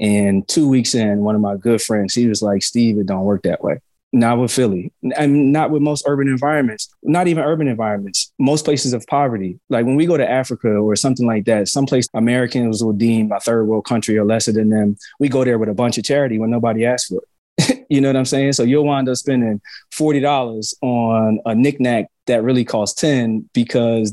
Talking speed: 220 wpm